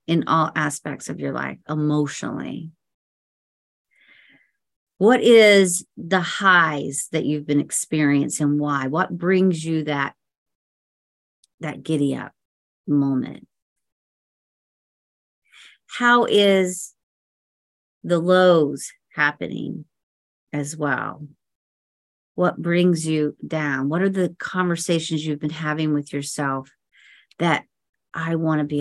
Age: 40-59